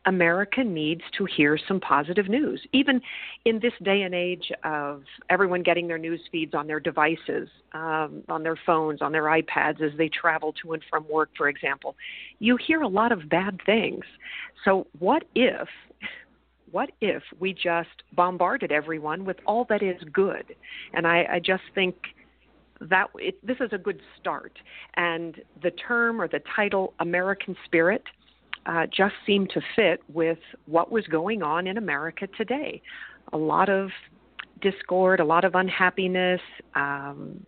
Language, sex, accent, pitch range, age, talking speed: English, female, American, 165-210 Hz, 50-69, 160 wpm